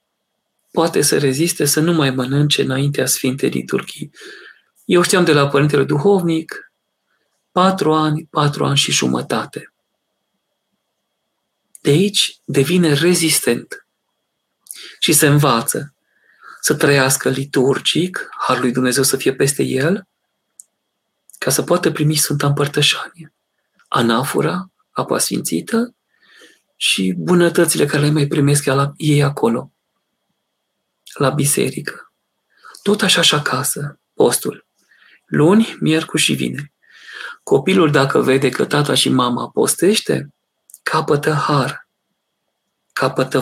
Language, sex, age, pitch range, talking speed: Romanian, male, 40-59, 140-165 Hz, 110 wpm